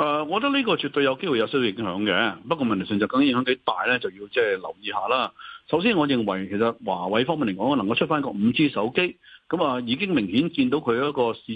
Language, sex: Chinese, male